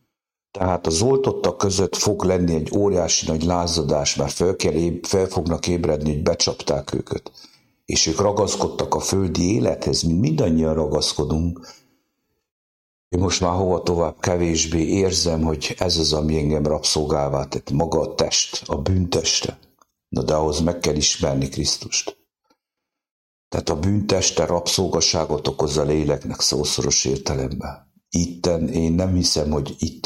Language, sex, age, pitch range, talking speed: English, male, 60-79, 75-85 Hz, 135 wpm